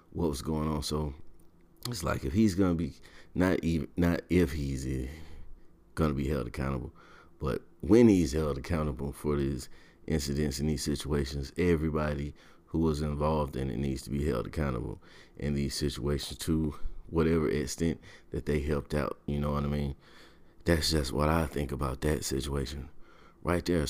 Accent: American